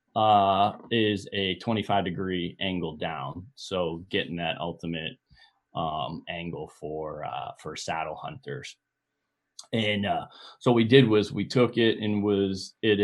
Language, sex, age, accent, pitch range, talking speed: English, male, 30-49, American, 85-105 Hz, 140 wpm